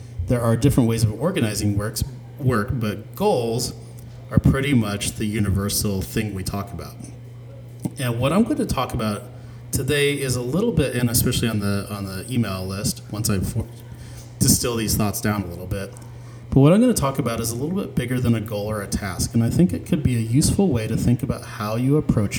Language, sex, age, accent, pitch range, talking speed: English, male, 30-49, American, 105-125 Hz, 215 wpm